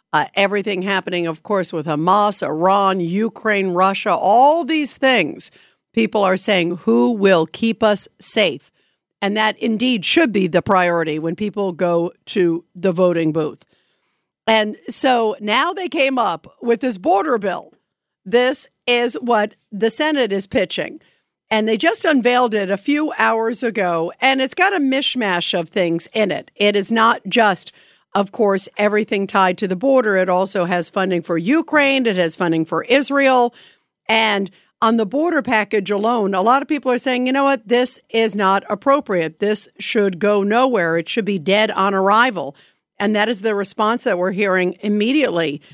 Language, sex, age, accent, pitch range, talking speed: English, female, 50-69, American, 190-245 Hz, 170 wpm